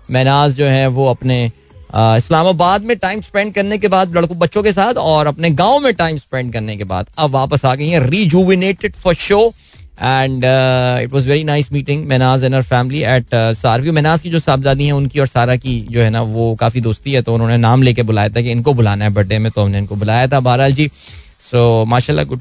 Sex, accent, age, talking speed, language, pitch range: male, native, 20-39, 220 wpm, Hindi, 120-170 Hz